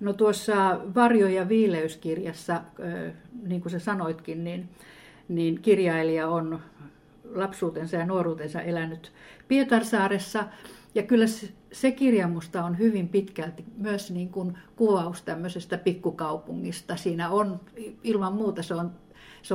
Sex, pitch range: female, 170-205 Hz